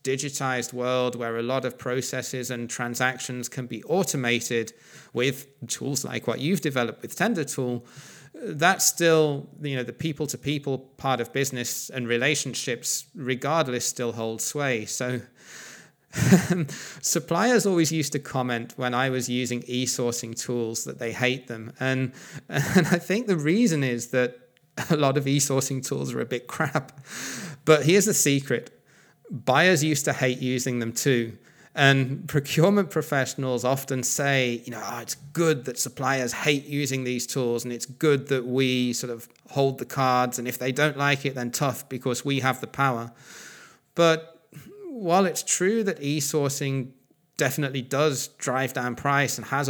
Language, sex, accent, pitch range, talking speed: English, male, British, 125-150 Hz, 160 wpm